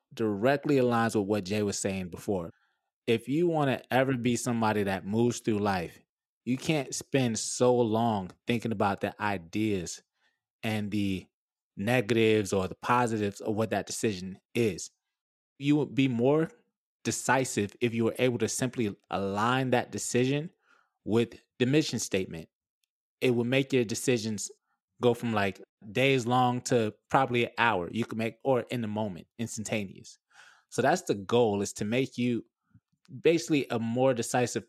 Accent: American